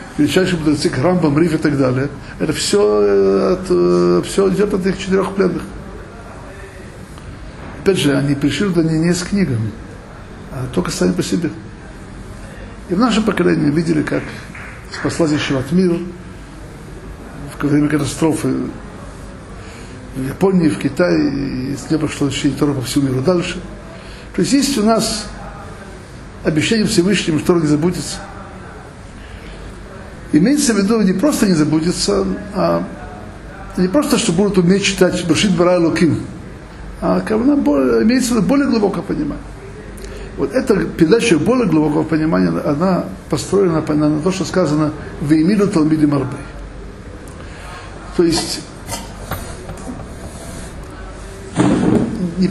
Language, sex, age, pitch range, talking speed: Russian, male, 60-79, 135-190 Hz, 125 wpm